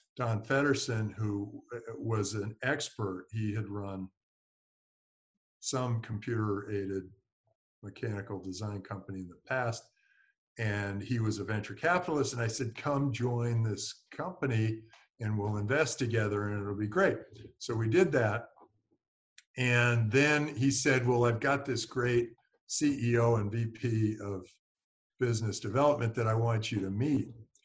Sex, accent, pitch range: male, American, 105-130 Hz